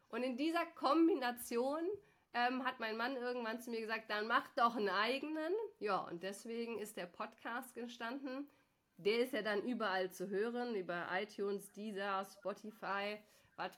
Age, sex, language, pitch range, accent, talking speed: 30-49, female, German, 190-240 Hz, German, 155 wpm